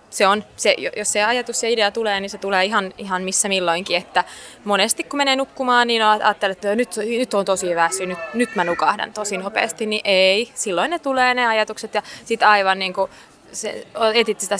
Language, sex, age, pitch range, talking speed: Finnish, female, 20-39, 185-225 Hz, 185 wpm